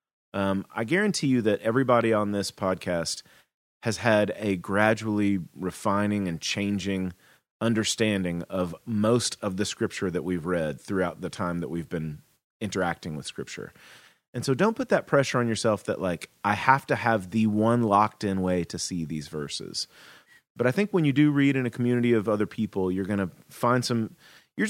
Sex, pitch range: male, 95-135 Hz